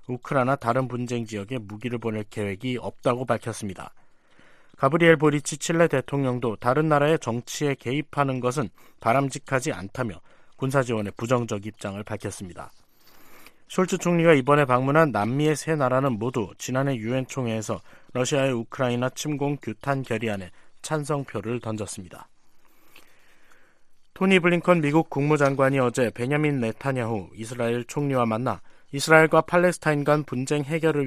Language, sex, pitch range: Korean, male, 115-145 Hz